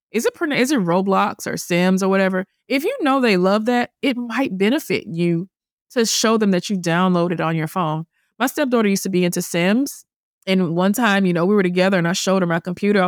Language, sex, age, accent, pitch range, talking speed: English, female, 20-39, American, 180-235 Hz, 225 wpm